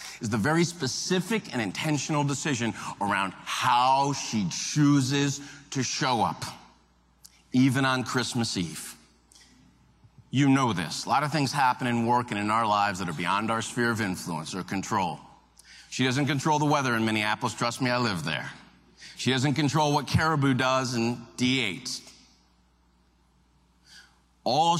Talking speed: 150 wpm